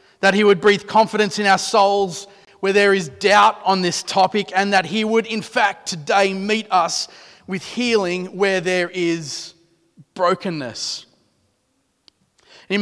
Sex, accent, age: male, Australian, 30-49